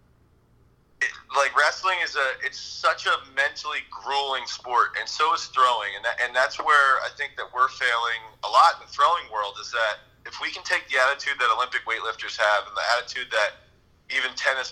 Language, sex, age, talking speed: English, male, 30-49, 200 wpm